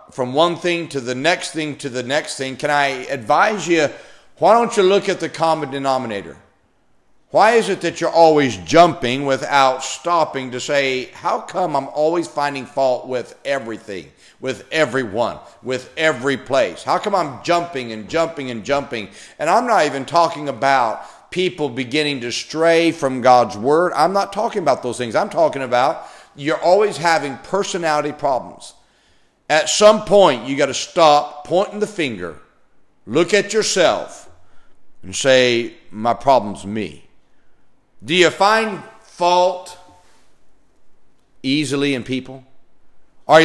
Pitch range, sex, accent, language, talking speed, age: 130-170 Hz, male, American, English, 150 wpm, 50-69